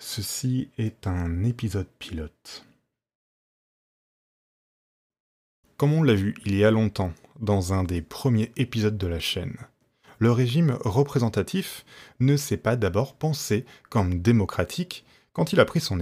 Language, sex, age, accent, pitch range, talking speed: French, male, 20-39, French, 95-140 Hz, 135 wpm